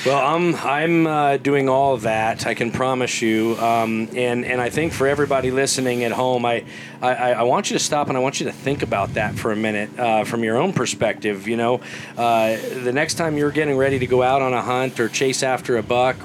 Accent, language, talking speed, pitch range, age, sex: American, English, 240 wpm, 115-135 Hz, 40-59, male